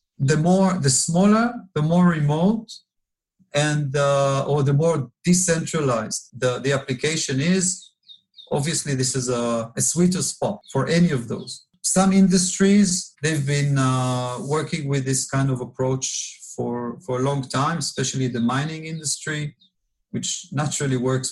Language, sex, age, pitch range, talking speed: English, male, 40-59, 130-170 Hz, 145 wpm